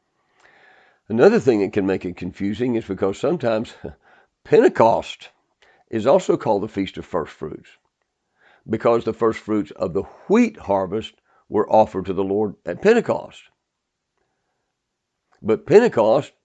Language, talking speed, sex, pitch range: English, 130 wpm, male, 90-115 Hz